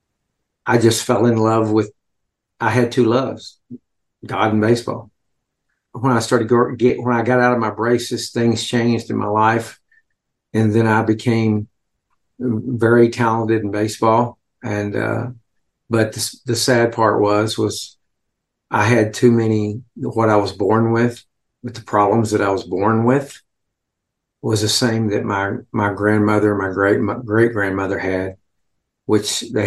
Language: English